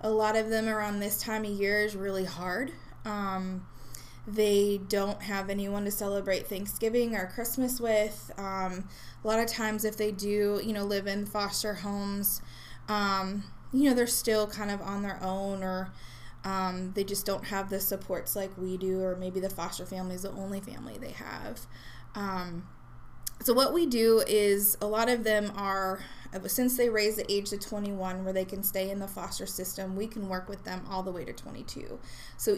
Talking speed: 195 wpm